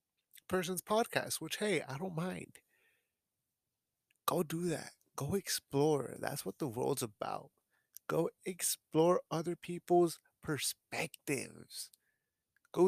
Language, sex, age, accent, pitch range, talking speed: English, male, 30-49, American, 135-175 Hz, 105 wpm